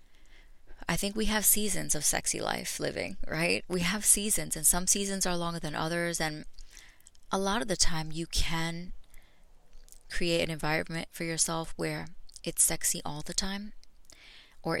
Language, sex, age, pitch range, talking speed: English, female, 20-39, 145-170 Hz, 160 wpm